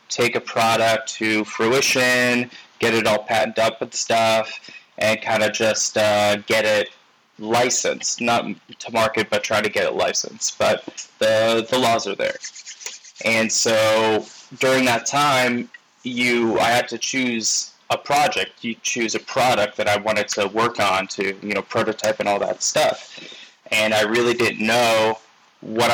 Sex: male